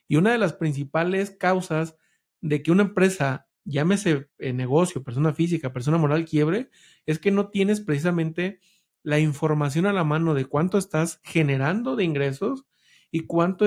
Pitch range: 150-185 Hz